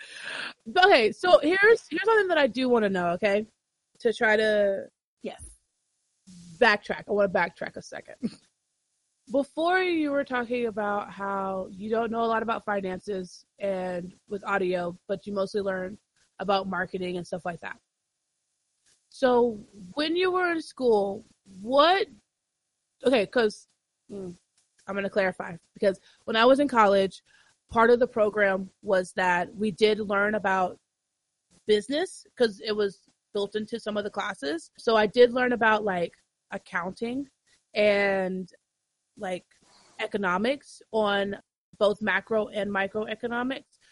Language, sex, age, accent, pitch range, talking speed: English, female, 20-39, American, 190-240 Hz, 140 wpm